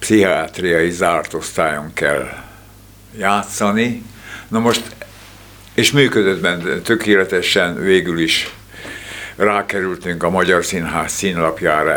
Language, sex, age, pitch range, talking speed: Hungarian, male, 60-79, 85-100 Hz, 85 wpm